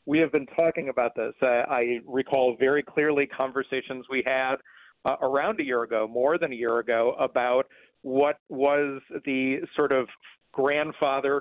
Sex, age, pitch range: male, 50-69, 120-145 Hz